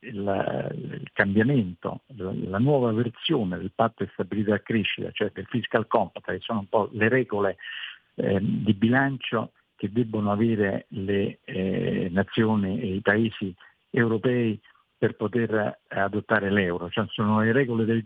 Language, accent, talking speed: Italian, native, 140 wpm